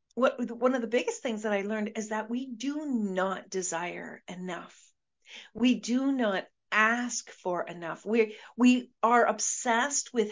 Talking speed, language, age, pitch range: 155 wpm, English, 50-69, 190-240 Hz